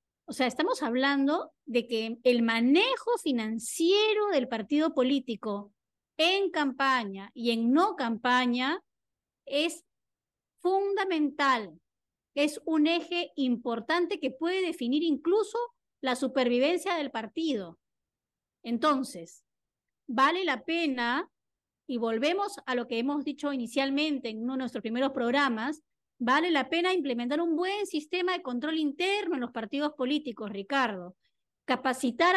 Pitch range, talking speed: 245-315 Hz, 120 wpm